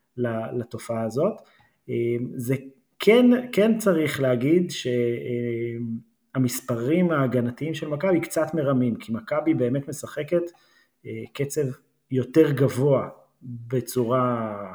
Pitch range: 120-150 Hz